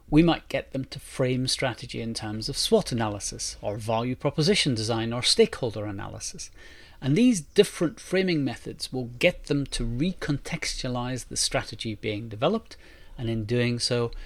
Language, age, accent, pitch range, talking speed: English, 40-59, British, 110-140 Hz, 155 wpm